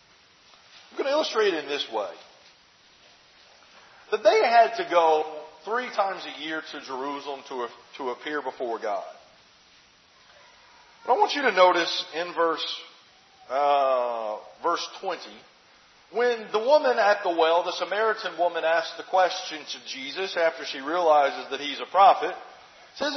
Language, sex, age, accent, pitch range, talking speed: English, male, 40-59, American, 155-235 Hz, 150 wpm